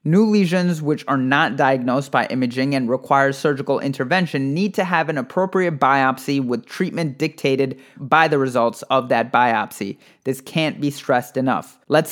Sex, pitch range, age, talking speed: male, 135-165 Hz, 30-49, 165 wpm